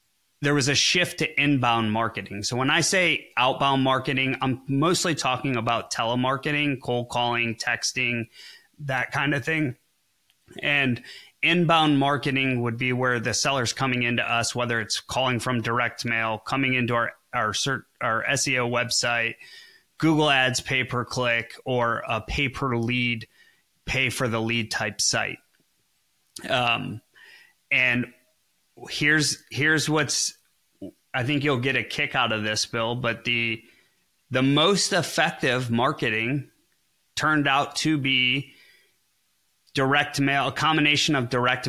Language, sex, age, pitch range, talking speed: English, male, 30-49, 120-145 Hz, 130 wpm